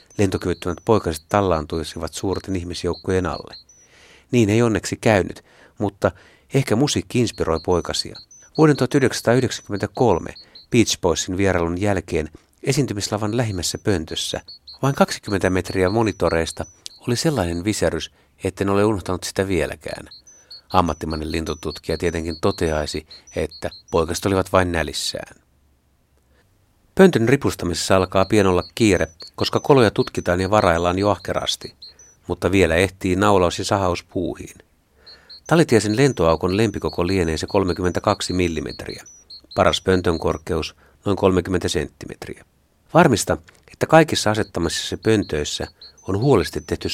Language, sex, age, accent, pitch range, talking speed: Finnish, male, 60-79, native, 85-105 Hz, 105 wpm